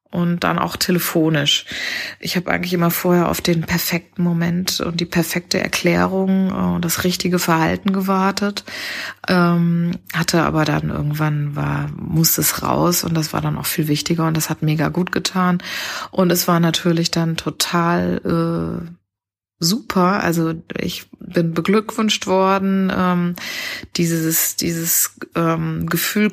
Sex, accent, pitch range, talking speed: female, German, 160-185 Hz, 145 wpm